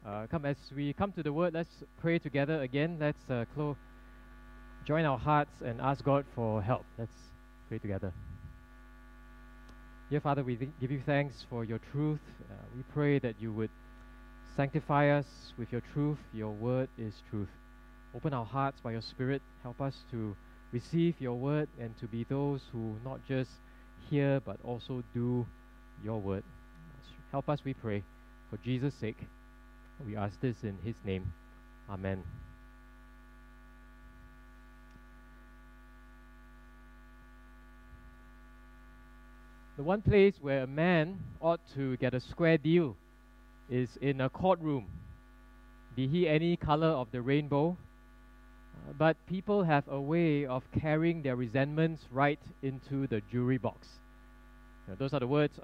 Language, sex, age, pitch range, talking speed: English, male, 20-39, 115-150 Hz, 140 wpm